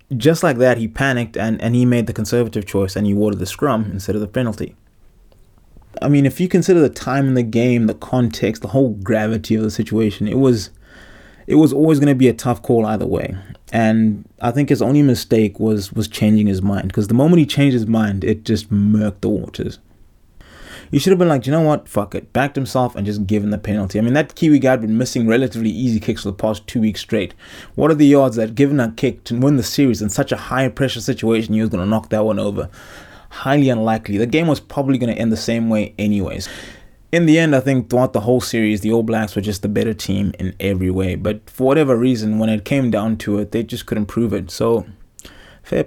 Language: English